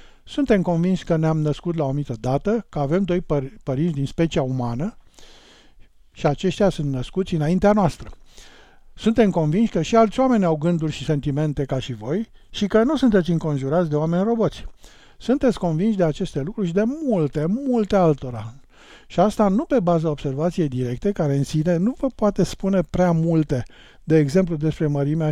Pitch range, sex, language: 150-200 Hz, male, Romanian